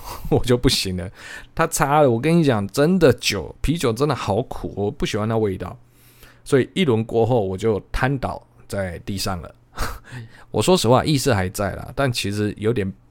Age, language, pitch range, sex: 20-39, Chinese, 100-140 Hz, male